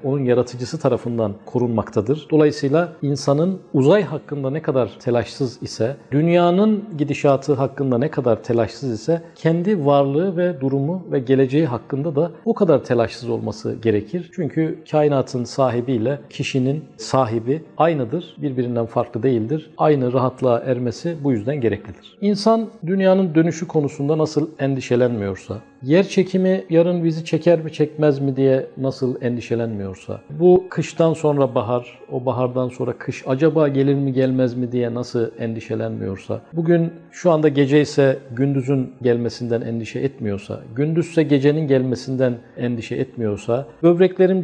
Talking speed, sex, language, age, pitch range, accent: 130 wpm, male, Turkish, 50-69, 120-155 Hz, native